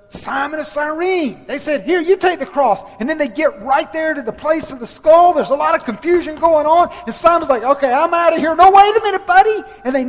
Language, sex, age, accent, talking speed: English, male, 40-59, American, 260 wpm